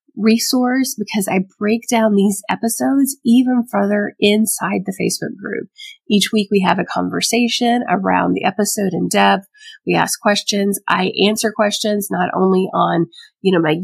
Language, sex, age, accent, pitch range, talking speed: English, female, 30-49, American, 200-250 Hz, 155 wpm